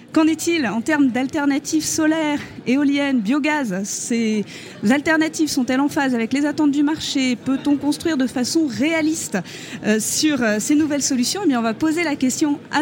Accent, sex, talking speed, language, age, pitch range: French, female, 175 wpm, French, 30-49, 220-290 Hz